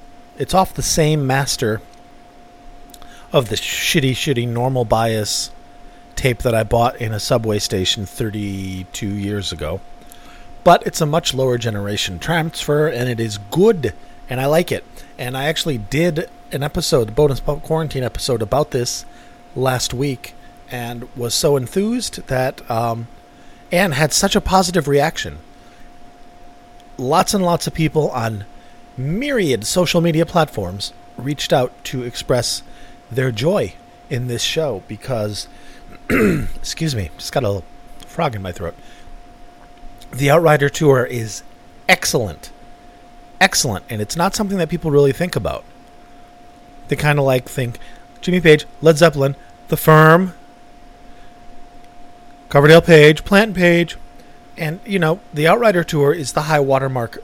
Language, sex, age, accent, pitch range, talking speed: English, male, 40-59, American, 115-160 Hz, 140 wpm